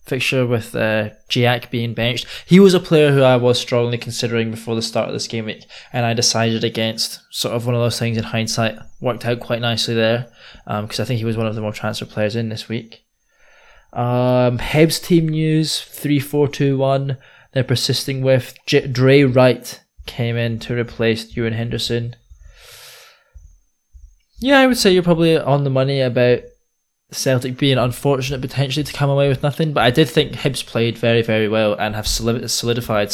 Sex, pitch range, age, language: male, 115-135 Hz, 20-39, English